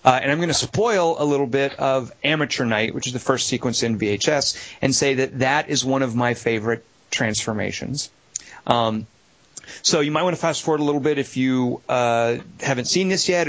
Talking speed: 210 wpm